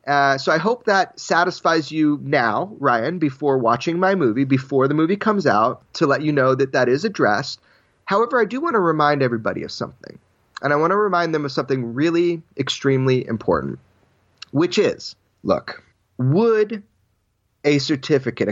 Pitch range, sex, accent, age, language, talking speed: 125-165 Hz, male, American, 30-49, English, 170 wpm